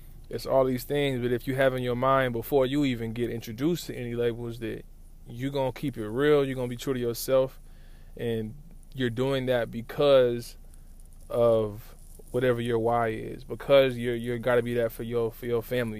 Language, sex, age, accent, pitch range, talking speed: English, male, 20-39, American, 115-130 Hz, 205 wpm